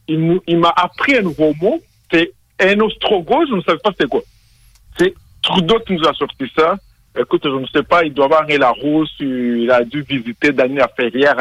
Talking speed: 205 wpm